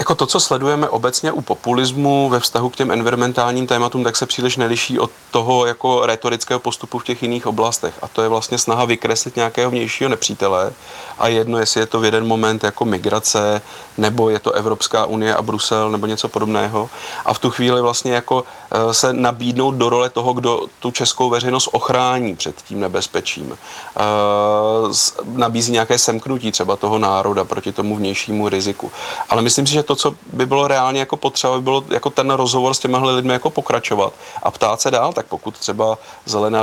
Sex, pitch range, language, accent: male, 110-125 Hz, Czech, native